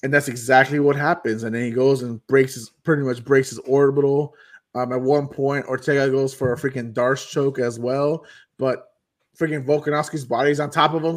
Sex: male